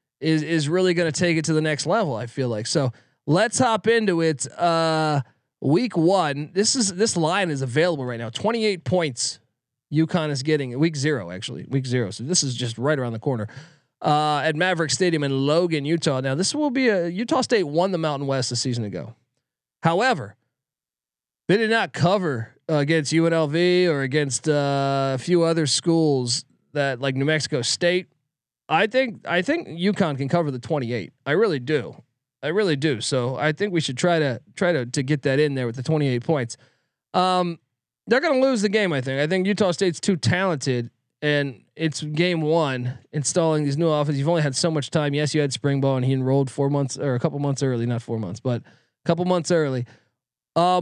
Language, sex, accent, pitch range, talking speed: English, male, American, 135-175 Hz, 205 wpm